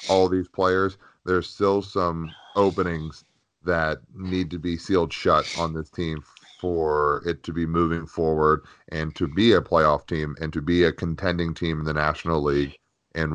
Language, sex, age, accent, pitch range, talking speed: English, male, 30-49, American, 80-95 Hz, 175 wpm